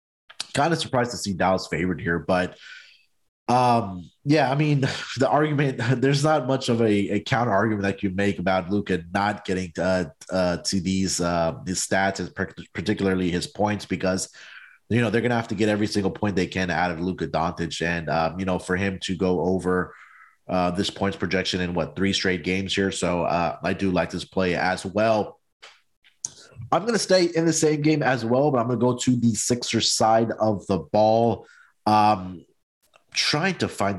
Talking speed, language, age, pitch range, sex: 200 wpm, English, 30-49, 90-120 Hz, male